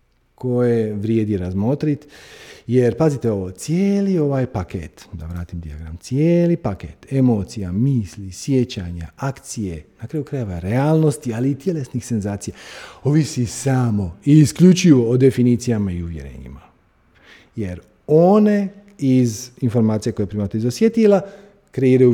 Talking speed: 115 wpm